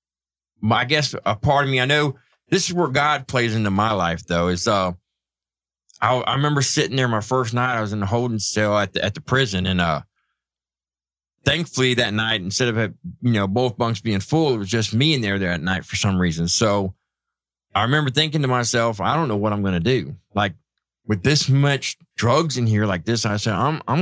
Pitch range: 105-155 Hz